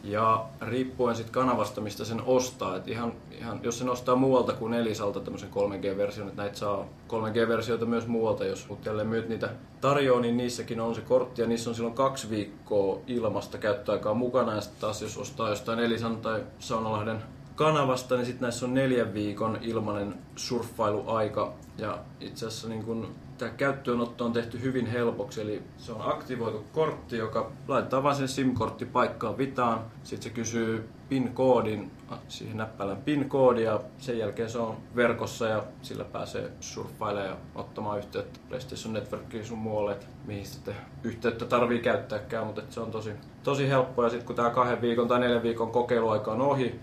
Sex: male